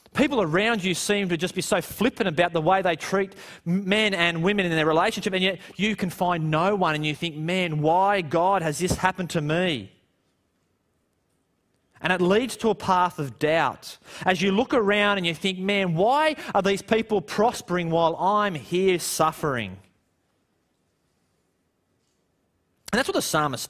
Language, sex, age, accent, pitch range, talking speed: English, male, 30-49, Australian, 150-210 Hz, 170 wpm